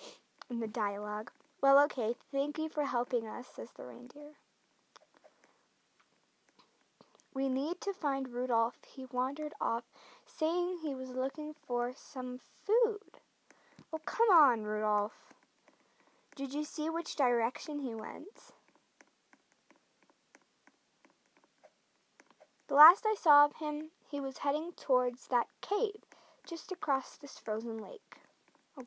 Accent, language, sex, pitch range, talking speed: American, English, female, 245-305 Hz, 120 wpm